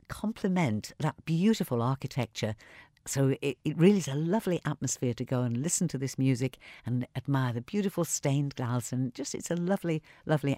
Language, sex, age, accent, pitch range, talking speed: English, female, 50-69, British, 120-150 Hz, 175 wpm